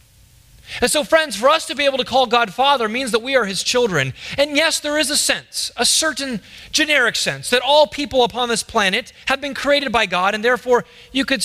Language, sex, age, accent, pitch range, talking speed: English, male, 30-49, American, 190-275 Hz, 225 wpm